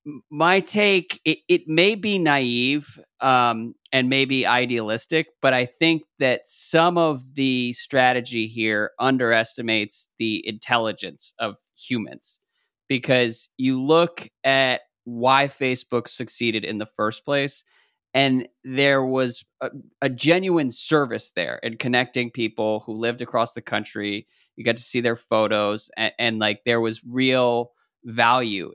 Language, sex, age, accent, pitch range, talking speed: English, male, 20-39, American, 120-140 Hz, 135 wpm